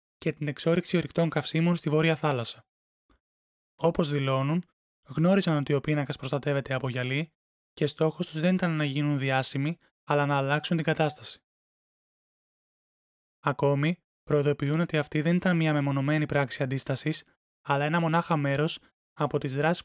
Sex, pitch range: male, 140-165 Hz